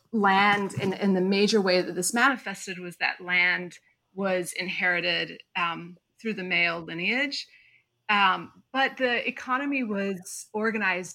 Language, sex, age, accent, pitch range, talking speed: English, female, 30-49, American, 180-210 Hz, 140 wpm